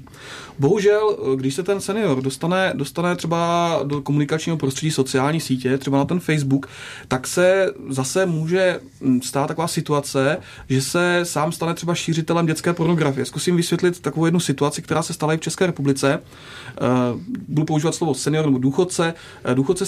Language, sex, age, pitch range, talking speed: Czech, male, 30-49, 140-180 Hz, 155 wpm